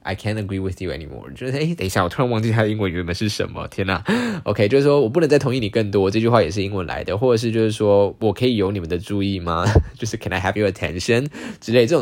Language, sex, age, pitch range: Chinese, male, 10-29, 95-125 Hz